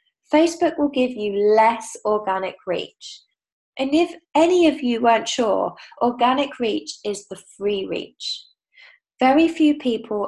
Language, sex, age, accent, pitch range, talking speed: English, female, 10-29, British, 210-285 Hz, 135 wpm